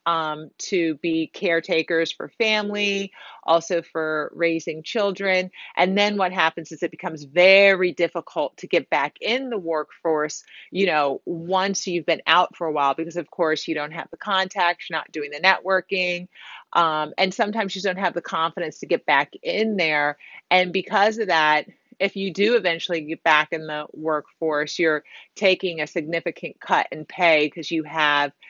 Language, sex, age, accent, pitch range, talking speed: English, female, 30-49, American, 155-185 Hz, 175 wpm